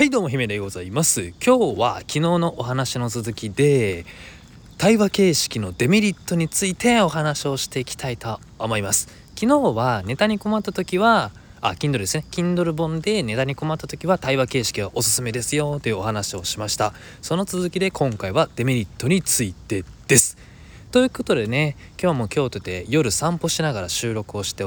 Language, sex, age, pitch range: Japanese, male, 20-39, 105-165 Hz